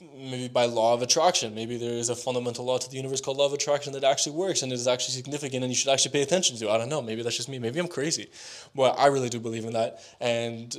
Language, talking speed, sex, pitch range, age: English, 280 wpm, male, 115-140 Hz, 20-39